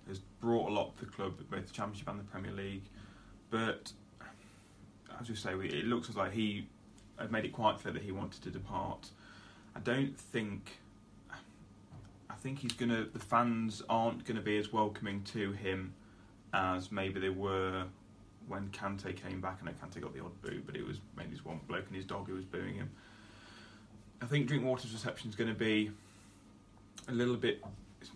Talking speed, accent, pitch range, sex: 195 wpm, British, 100-110 Hz, male